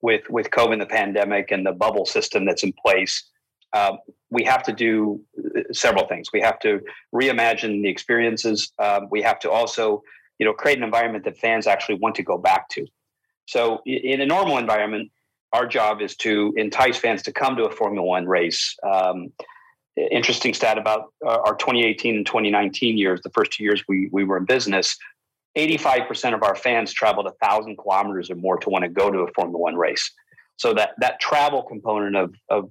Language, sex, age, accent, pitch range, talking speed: English, male, 40-59, American, 100-130 Hz, 195 wpm